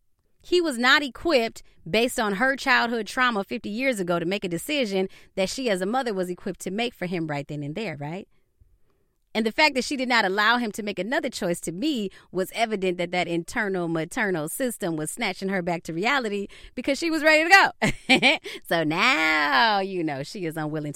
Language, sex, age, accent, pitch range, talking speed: English, female, 30-49, American, 165-230 Hz, 210 wpm